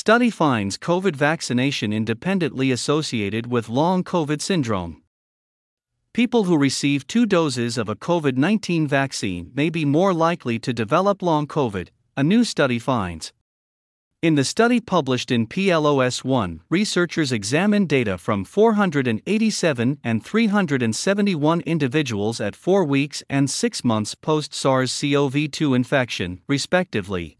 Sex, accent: male, American